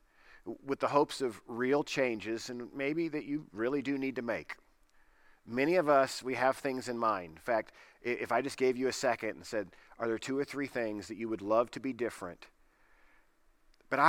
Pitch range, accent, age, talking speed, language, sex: 115-145 Hz, American, 40-59, 205 wpm, English, male